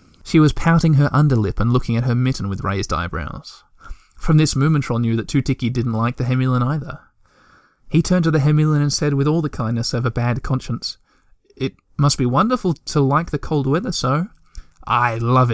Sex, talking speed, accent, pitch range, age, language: male, 195 wpm, Australian, 115-155 Hz, 20-39, English